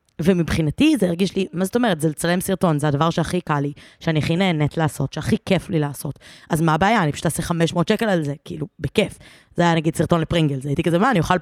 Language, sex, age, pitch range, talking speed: Hebrew, female, 20-39, 155-195 Hz, 235 wpm